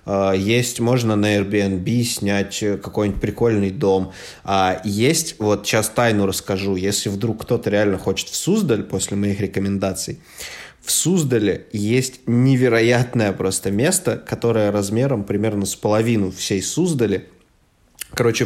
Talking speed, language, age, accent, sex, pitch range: 120 wpm, Russian, 20-39, native, male, 100-120 Hz